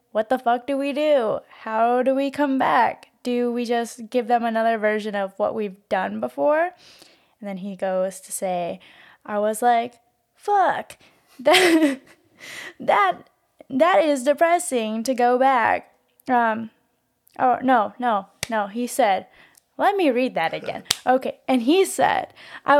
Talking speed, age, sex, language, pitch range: 155 wpm, 10-29, female, English, 220-275 Hz